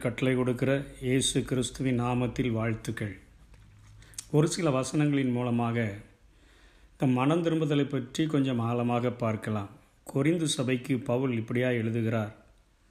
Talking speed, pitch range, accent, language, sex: 100 wpm, 120-145 Hz, native, Tamil, male